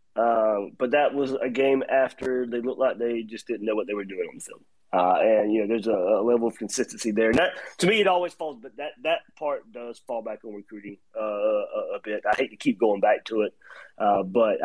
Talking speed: 255 wpm